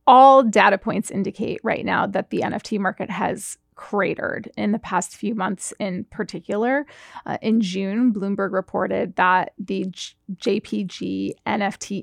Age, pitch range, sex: 30-49, 205-240 Hz, female